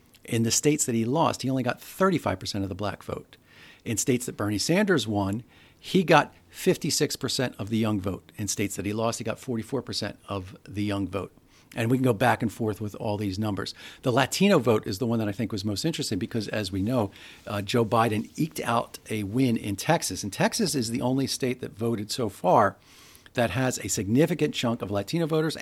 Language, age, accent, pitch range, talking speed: English, 50-69, American, 110-135 Hz, 225 wpm